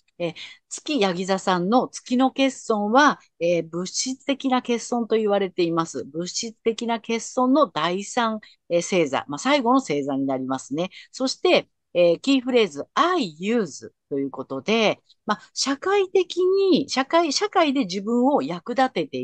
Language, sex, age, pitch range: Japanese, female, 50-69, 180-275 Hz